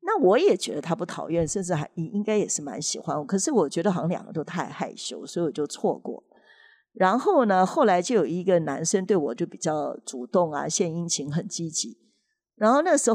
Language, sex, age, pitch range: Chinese, female, 50-69, 160-215 Hz